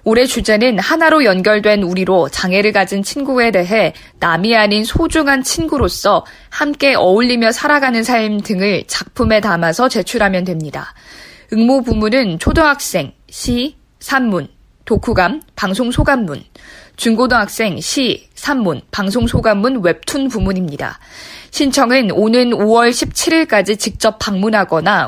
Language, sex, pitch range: Korean, female, 195-255 Hz